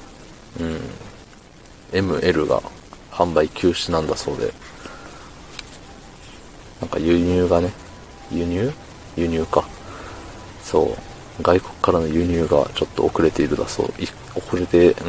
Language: Japanese